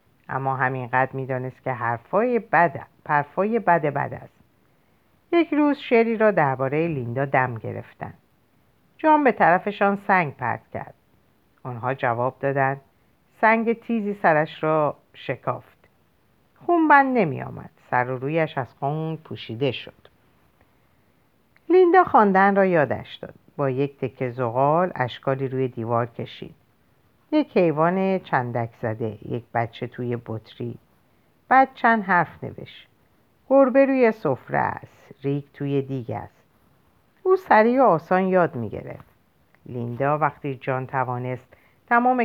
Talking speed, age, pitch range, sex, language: 125 wpm, 50-69, 130-190 Hz, female, Persian